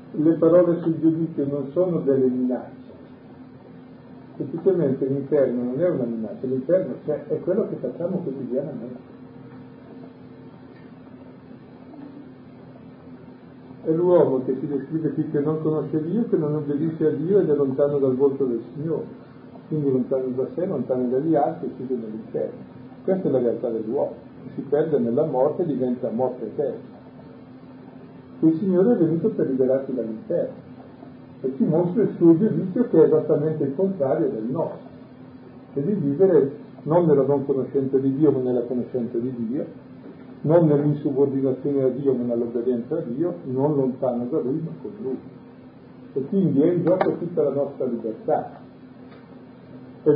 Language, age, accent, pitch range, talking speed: Italian, 50-69, American, 130-160 Hz, 150 wpm